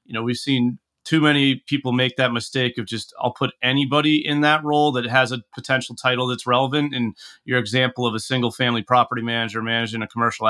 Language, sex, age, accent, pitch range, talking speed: English, male, 30-49, American, 120-145 Hz, 210 wpm